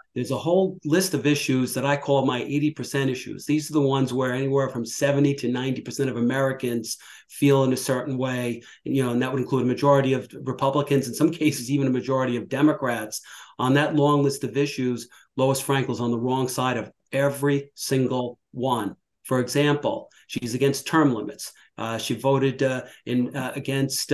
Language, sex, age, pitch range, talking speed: English, male, 40-59, 125-140 Hz, 190 wpm